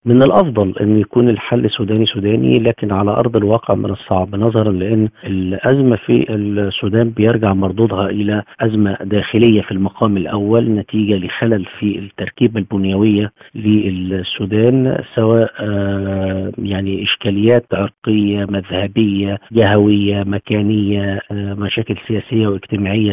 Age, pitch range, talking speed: 50-69, 100-115 Hz, 110 wpm